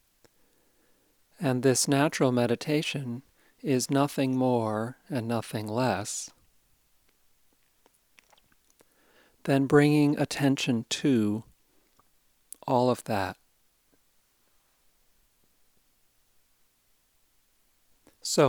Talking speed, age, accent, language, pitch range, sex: 60 wpm, 50-69, American, English, 115-135 Hz, male